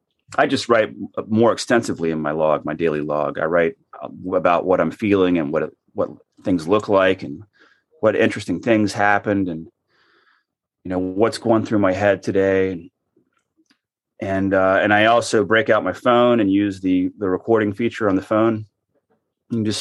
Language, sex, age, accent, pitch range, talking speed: English, male, 30-49, American, 95-115 Hz, 175 wpm